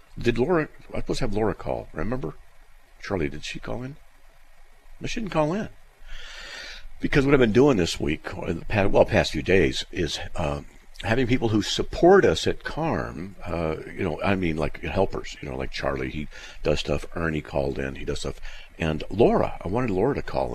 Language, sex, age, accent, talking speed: English, male, 50-69, American, 200 wpm